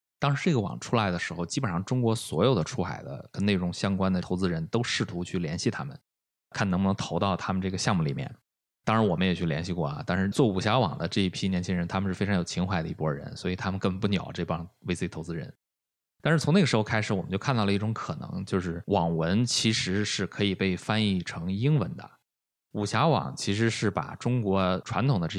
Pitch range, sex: 90-115 Hz, male